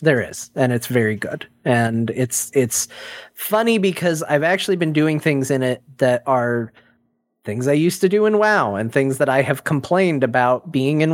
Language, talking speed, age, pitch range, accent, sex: English, 195 wpm, 30-49, 120-165 Hz, American, male